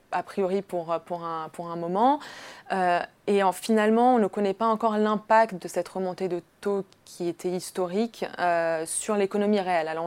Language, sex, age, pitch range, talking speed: French, female, 20-39, 175-210 Hz, 185 wpm